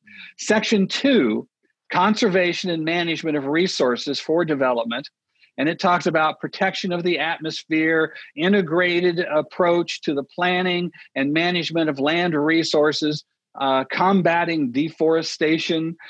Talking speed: 110 wpm